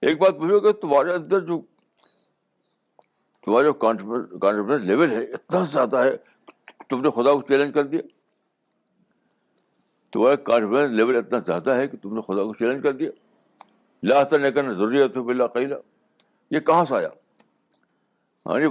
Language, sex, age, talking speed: Urdu, male, 60-79, 95 wpm